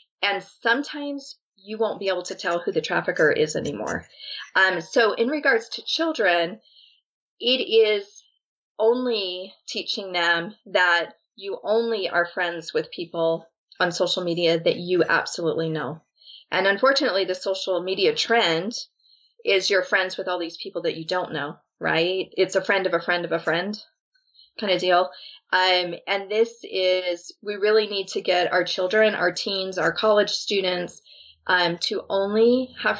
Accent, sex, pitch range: American, female, 175-235 Hz